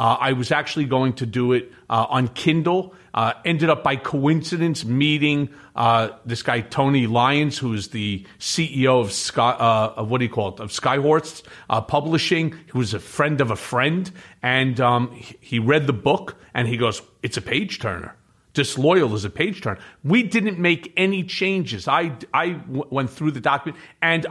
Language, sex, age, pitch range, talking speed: English, male, 40-59, 125-175 Hz, 190 wpm